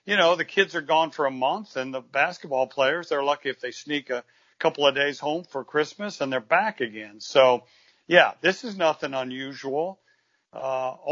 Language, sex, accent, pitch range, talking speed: English, male, American, 130-160 Hz, 195 wpm